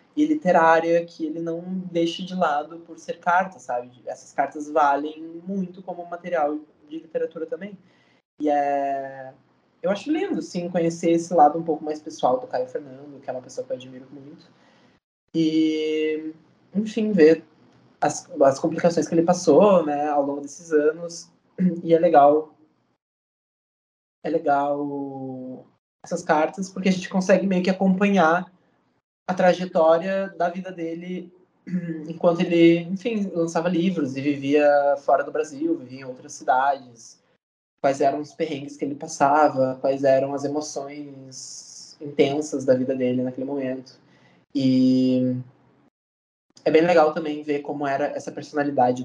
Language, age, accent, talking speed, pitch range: Portuguese, 20-39, Brazilian, 145 wpm, 135-175 Hz